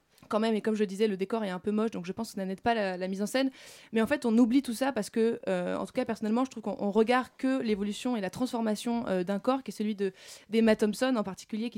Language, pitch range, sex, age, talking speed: French, 195-235 Hz, female, 20-39, 305 wpm